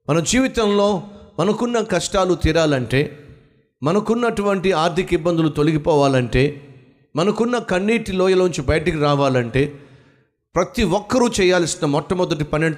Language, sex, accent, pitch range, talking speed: Telugu, male, native, 145-215 Hz, 95 wpm